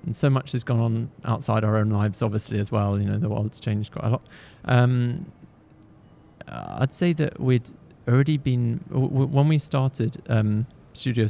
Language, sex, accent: English, male, British